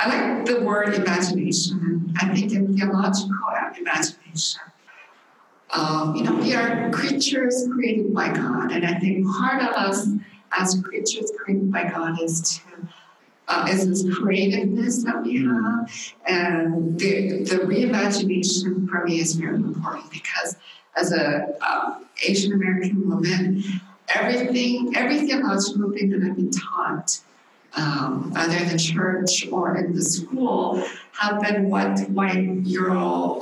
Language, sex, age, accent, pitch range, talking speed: English, female, 60-79, American, 180-210 Hz, 140 wpm